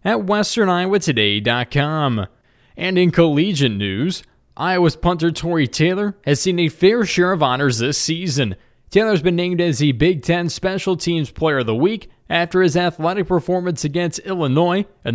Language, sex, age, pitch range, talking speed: English, male, 20-39, 145-180 Hz, 155 wpm